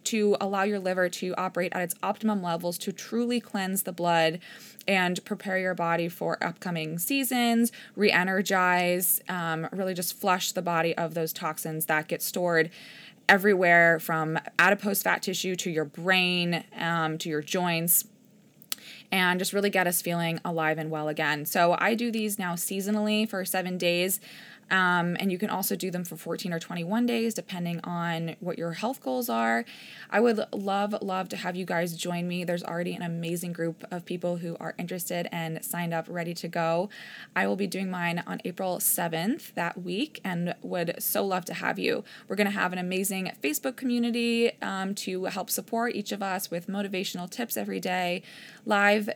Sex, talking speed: female, 180 wpm